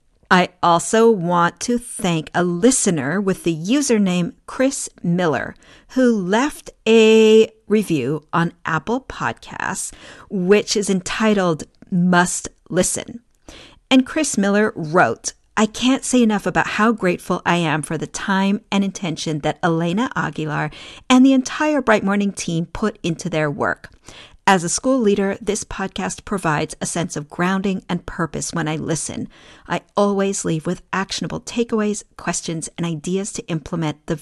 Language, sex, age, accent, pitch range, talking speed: English, female, 50-69, American, 170-220 Hz, 145 wpm